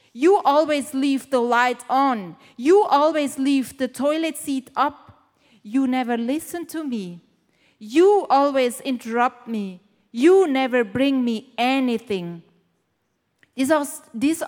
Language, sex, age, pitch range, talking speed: English, female, 30-49, 235-295 Hz, 115 wpm